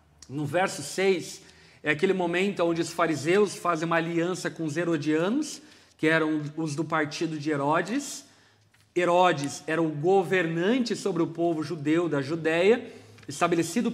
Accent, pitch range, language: Brazilian, 160-220 Hz, Portuguese